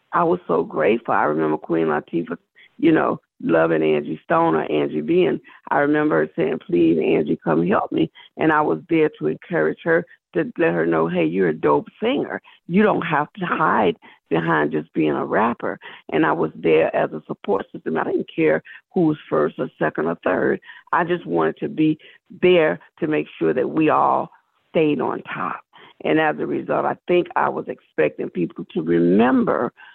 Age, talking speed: 50-69, 190 wpm